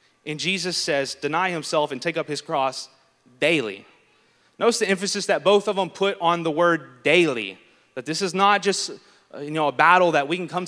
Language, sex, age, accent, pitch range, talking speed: English, male, 30-49, American, 145-180 Hz, 200 wpm